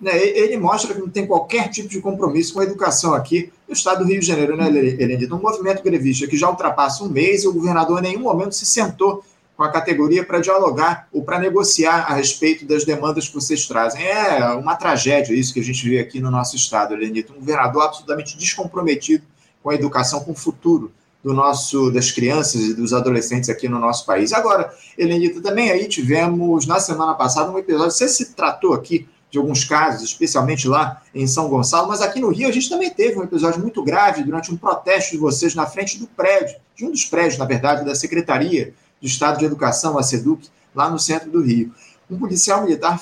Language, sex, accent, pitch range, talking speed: Portuguese, male, Brazilian, 140-190 Hz, 210 wpm